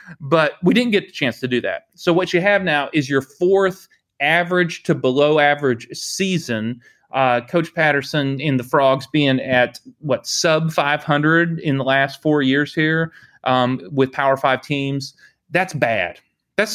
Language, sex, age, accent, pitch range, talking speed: English, male, 30-49, American, 130-165 Hz, 170 wpm